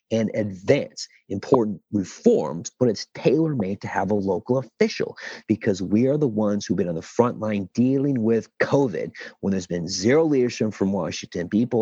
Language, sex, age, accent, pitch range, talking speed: English, male, 40-59, American, 95-125 Hz, 175 wpm